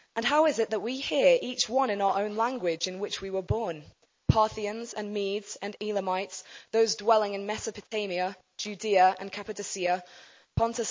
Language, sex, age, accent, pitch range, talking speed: English, female, 20-39, British, 190-235 Hz, 170 wpm